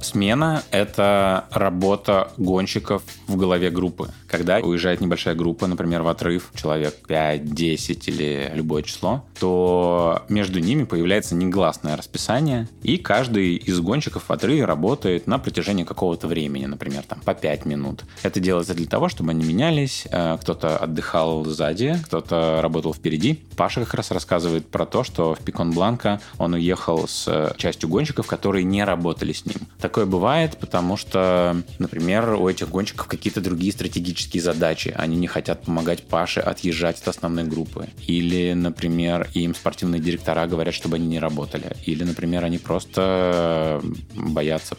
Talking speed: 150 wpm